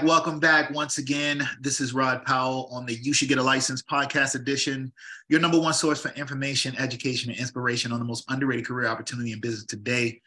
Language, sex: English, male